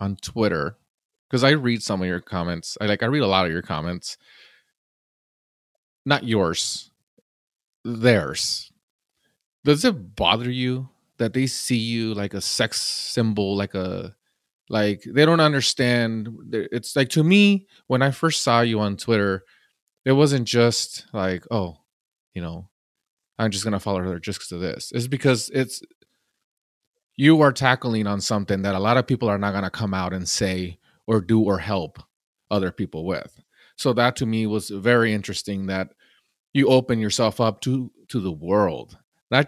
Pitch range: 100-130 Hz